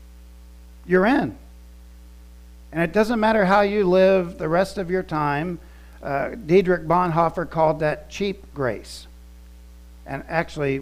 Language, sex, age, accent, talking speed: English, male, 60-79, American, 130 wpm